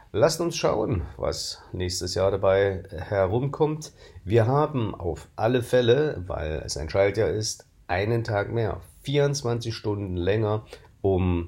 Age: 50-69